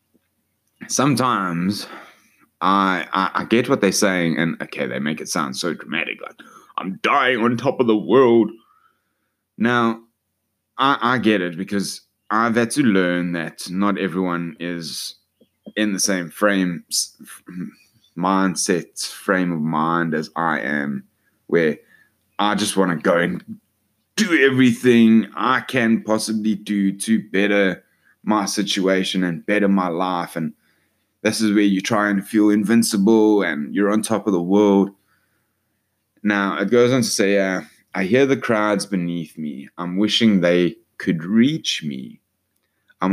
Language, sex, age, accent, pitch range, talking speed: English, male, 20-39, Australian, 85-105 Hz, 145 wpm